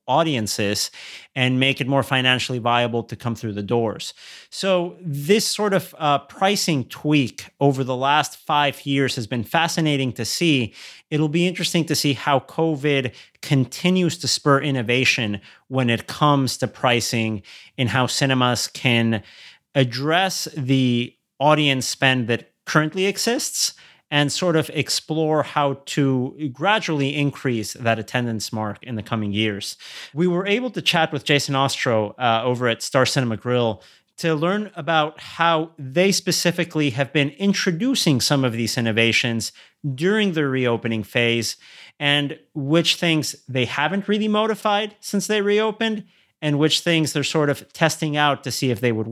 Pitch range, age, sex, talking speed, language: 120-160 Hz, 30-49, male, 155 wpm, English